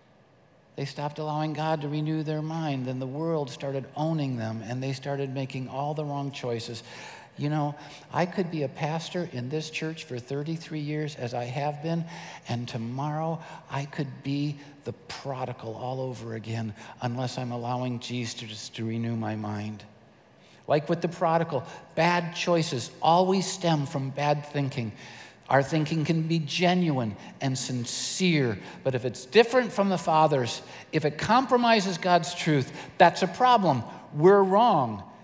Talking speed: 155 wpm